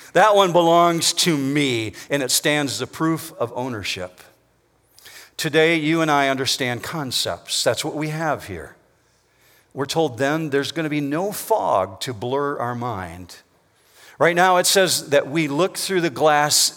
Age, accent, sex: 50-69, American, male